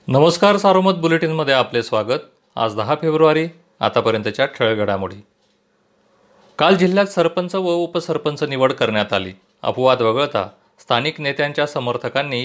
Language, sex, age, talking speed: Marathi, male, 40-59, 110 wpm